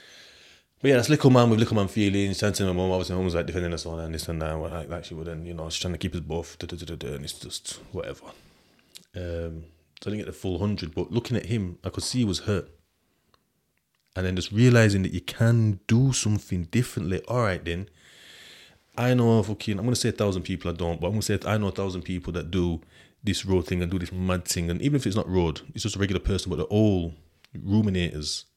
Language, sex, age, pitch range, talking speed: English, male, 20-39, 85-110 Hz, 260 wpm